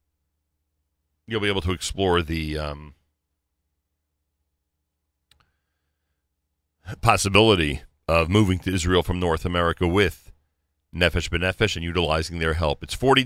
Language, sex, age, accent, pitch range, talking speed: English, male, 40-59, American, 75-110 Hz, 110 wpm